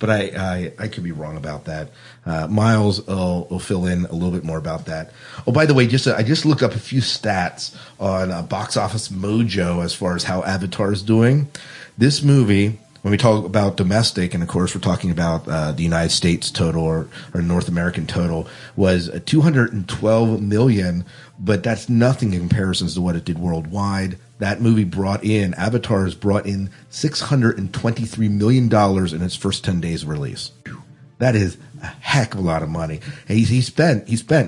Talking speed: 195 wpm